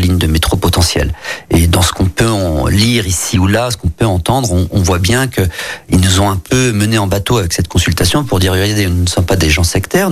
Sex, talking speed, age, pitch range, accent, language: male, 250 wpm, 40-59, 90-115 Hz, French, French